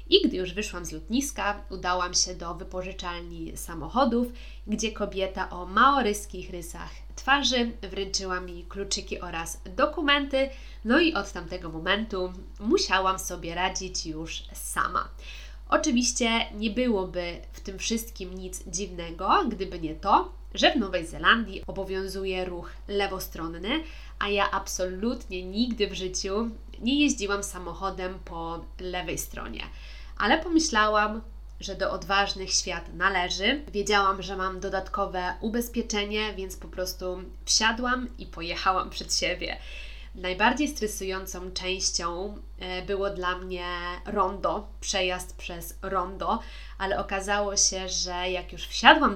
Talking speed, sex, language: 120 wpm, female, Polish